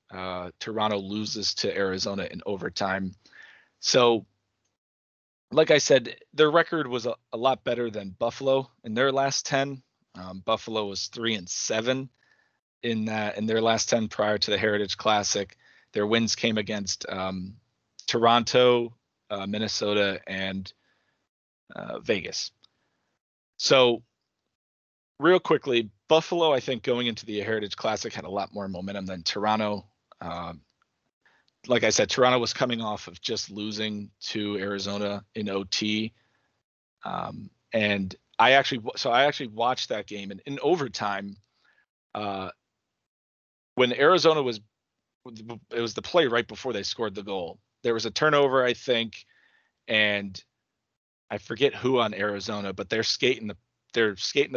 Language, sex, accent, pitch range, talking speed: English, male, American, 100-120 Hz, 145 wpm